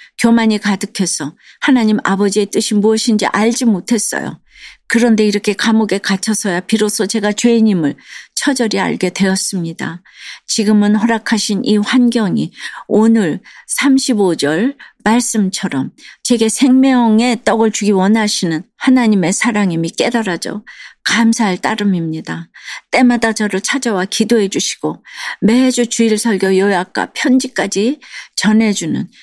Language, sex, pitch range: Korean, female, 185-235 Hz